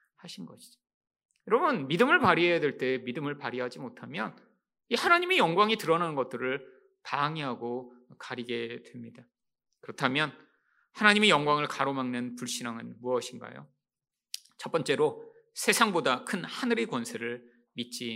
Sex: male